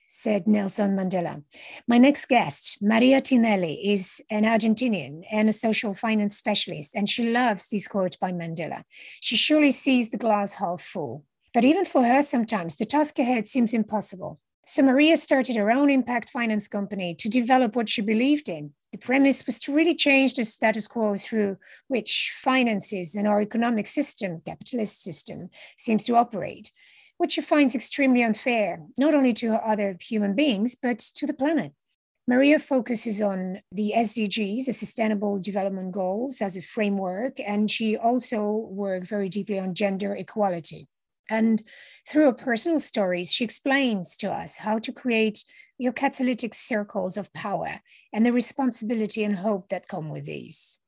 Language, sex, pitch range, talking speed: English, female, 200-250 Hz, 160 wpm